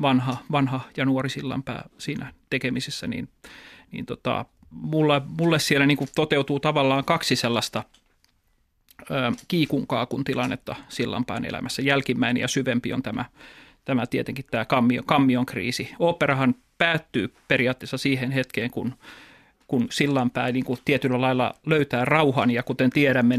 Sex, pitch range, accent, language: male, 125-140 Hz, native, Finnish